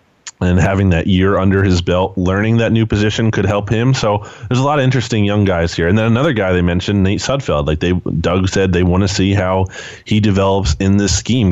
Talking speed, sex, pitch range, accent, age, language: 235 wpm, male, 90-105 Hz, American, 20-39, English